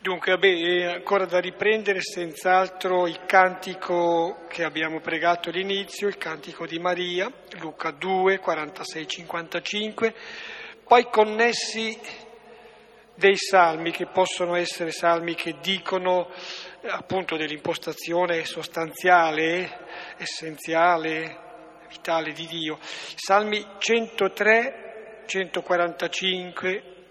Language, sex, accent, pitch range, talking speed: Italian, male, native, 170-200 Hz, 90 wpm